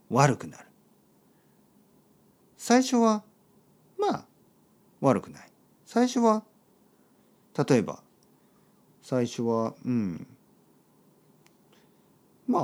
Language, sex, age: Japanese, male, 50-69